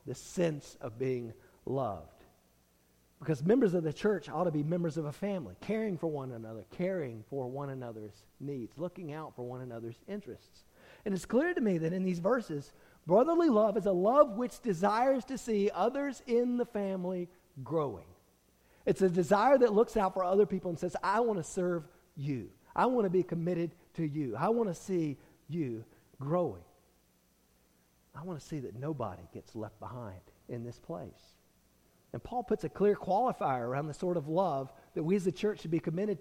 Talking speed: 190 wpm